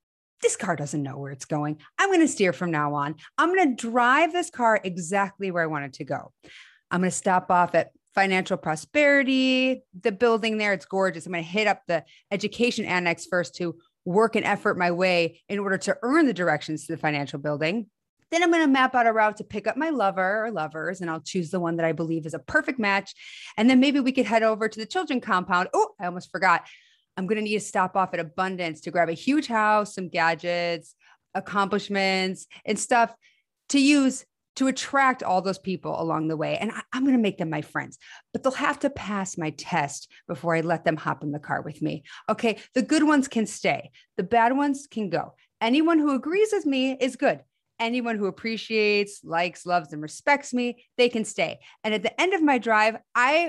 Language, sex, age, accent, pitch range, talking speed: English, female, 30-49, American, 170-245 Hz, 220 wpm